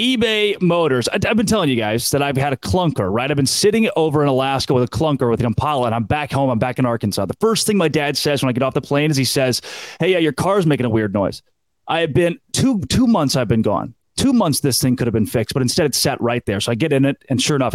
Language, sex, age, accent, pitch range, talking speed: English, male, 30-49, American, 125-155 Hz, 300 wpm